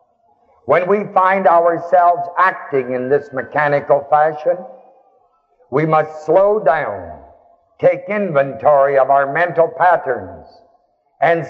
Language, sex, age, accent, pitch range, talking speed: English, male, 60-79, American, 150-215 Hz, 105 wpm